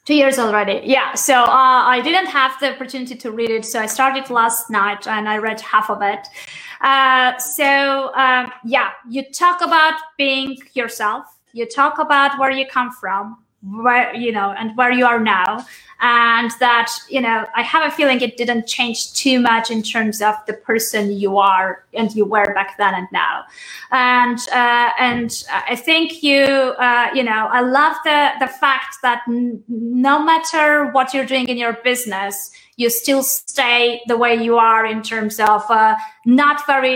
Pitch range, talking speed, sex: 220-270 Hz, 185 wpm, female